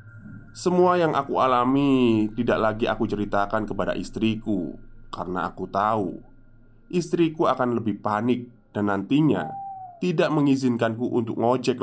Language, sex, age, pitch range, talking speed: Indonesian, male, 20-39, 95-120 Hz, 115 wpm